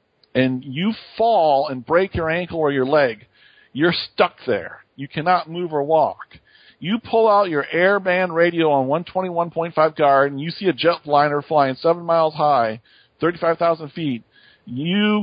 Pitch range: 145-175 Hz